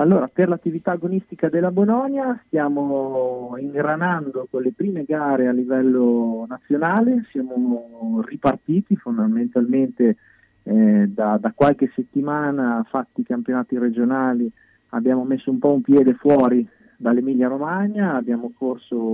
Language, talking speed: Italian, 120 wpm